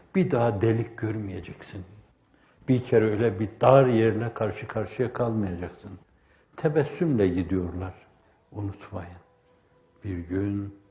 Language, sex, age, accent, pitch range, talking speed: Turkish, male, 60-79, native, 100-125 Hz, 100 wpm